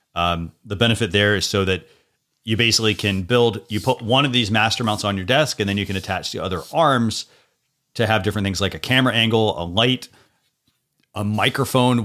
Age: 30-49